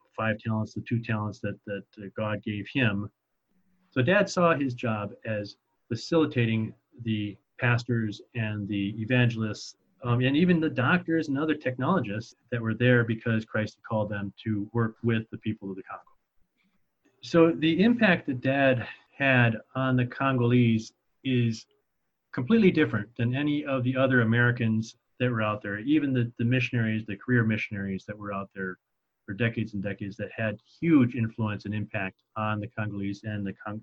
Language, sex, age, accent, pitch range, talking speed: English, male, 40-59, American, 110-130 Hz, 165 wpm